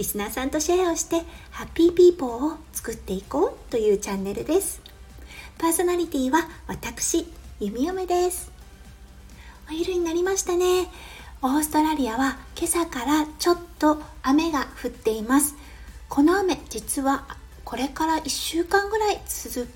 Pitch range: 225-330 Hz